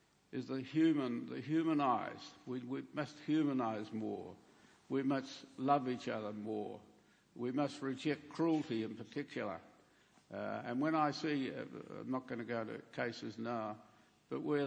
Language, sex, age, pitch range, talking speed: English, male, 60-79, 110-135 Hz, 155 wpm